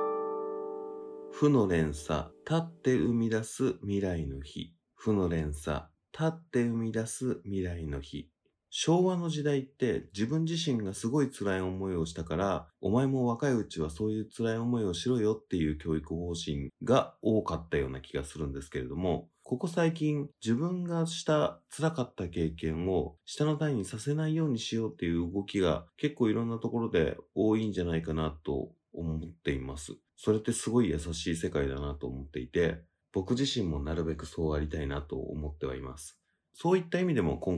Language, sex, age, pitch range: Japanese, male, 30-49, 80-120 Hz